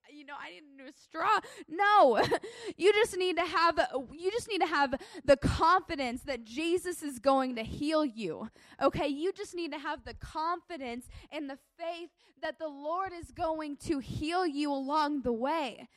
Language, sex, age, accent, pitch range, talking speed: English, female, 10-29, American, 265-340 Hz, 190 wpm